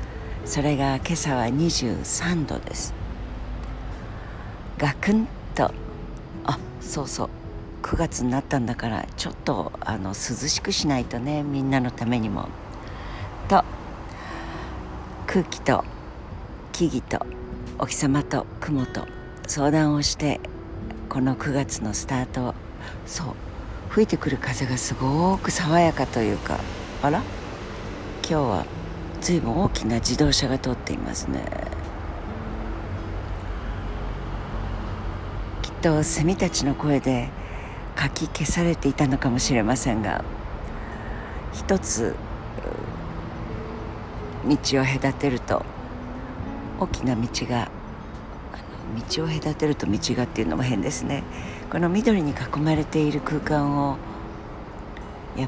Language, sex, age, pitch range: Japanese, female, 60-79, 105-145 Hz